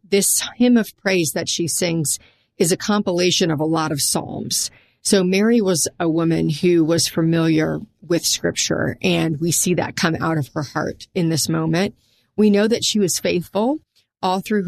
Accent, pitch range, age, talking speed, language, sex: American, 160-190 Hz, 40-59, 185 wpm, English, female